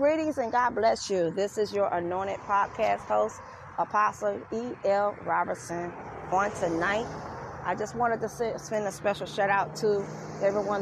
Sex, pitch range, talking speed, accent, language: female, 185-215 Hz, 150 wpm, American, English